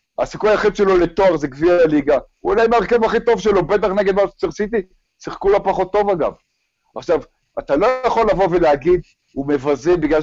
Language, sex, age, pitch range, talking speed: Hebrew, male, 50-69, 155-215 Hz, 190 wpm